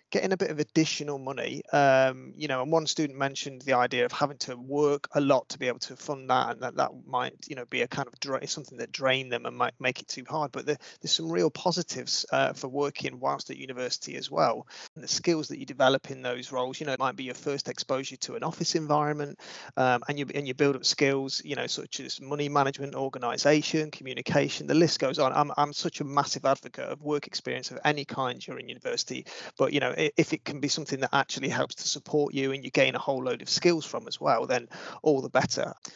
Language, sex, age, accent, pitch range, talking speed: English, male, 30-49, British, 135-160 Hz, 245 wpm